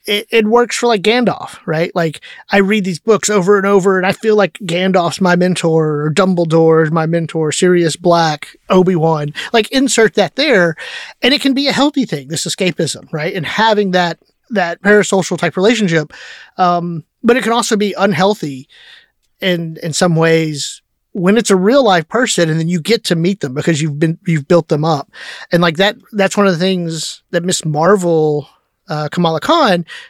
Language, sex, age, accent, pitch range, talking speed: English, male, 30-49, American, 160-200 Hz, 190 wpm